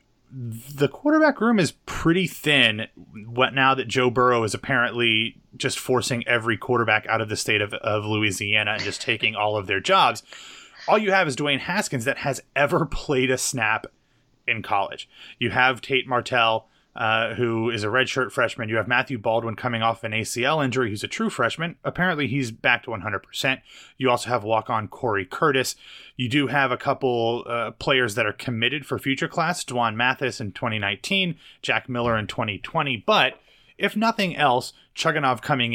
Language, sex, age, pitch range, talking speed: English, male, 30-49, 115-140 Hz, 180 wpm